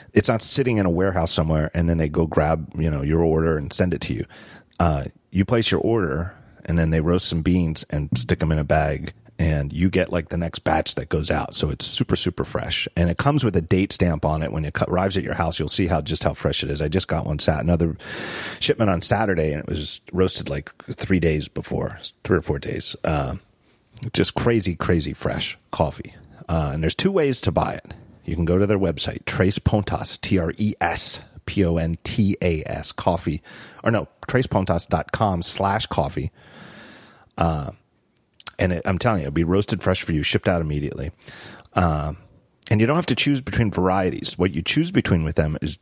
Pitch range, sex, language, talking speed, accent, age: 80-100 Hz, male, English, 220 wpm, American, 40-59